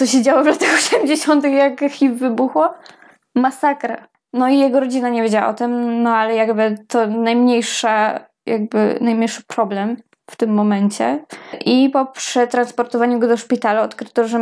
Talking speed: 155 wpm